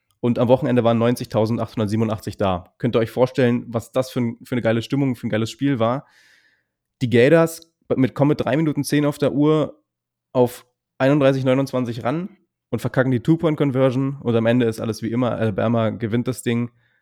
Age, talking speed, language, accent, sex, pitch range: 20-39, 185 wpm, German, German, male, 115-140 Hz